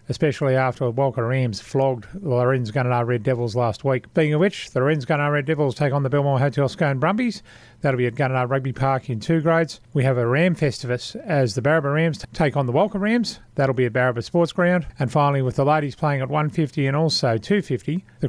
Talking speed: 225 wpm